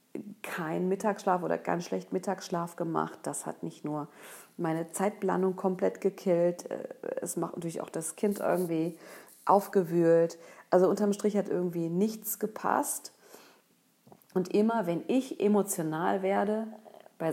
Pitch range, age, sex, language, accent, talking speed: 160-200 Hz, 40-59, female, German, German, 130 wpm